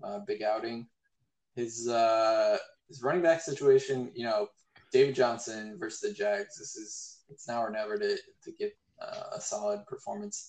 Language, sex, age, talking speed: English, male, 20-39, 165 wpm